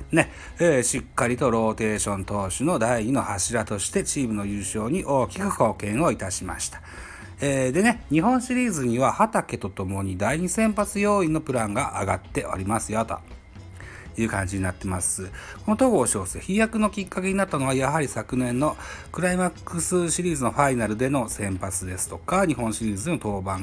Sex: male